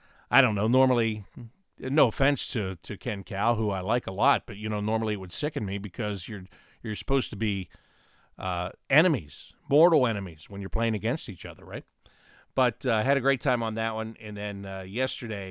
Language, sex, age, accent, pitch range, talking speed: English, male, 50-69, American, 100-115 Hz, 210 wpm